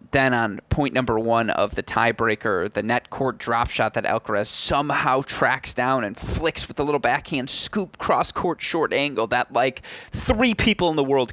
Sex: male